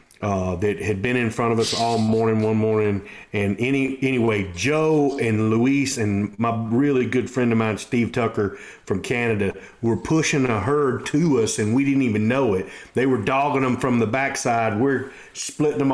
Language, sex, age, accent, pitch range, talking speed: English, male, 40-59, American, 115-165 Hz, 190 wpm